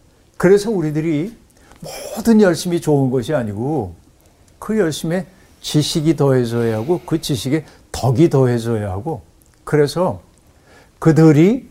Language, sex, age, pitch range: Korean, male, 60-79, 115-165 Hz